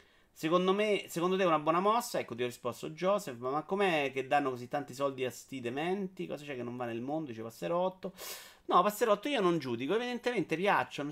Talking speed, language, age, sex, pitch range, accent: 215 wpm, Italian, 30-49, male, 125-170 Hz, native